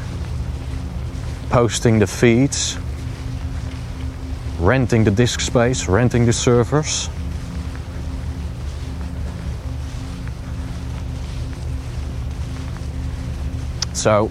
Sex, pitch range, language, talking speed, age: male, 70-95 Hz, English, 45 wpm, 30-49